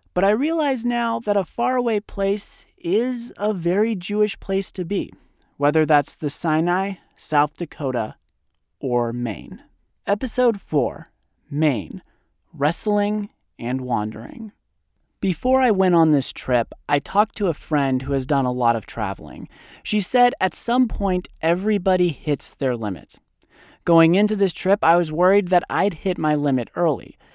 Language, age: English, 30-49